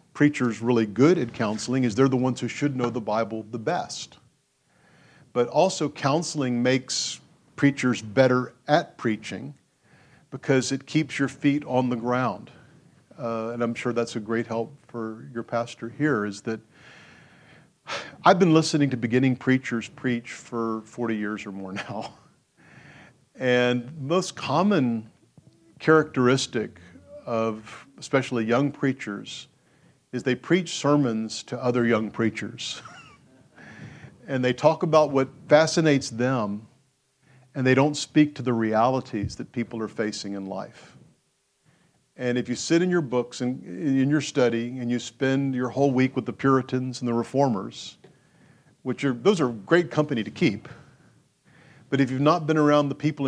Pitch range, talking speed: 115-140 Hz, 150 wpm